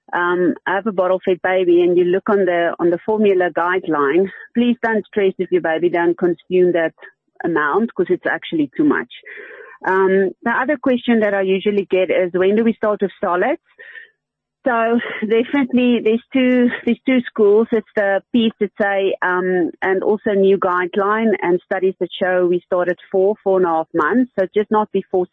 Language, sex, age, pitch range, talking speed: English, female, 40-59, 185-230 Hz, 185 wpm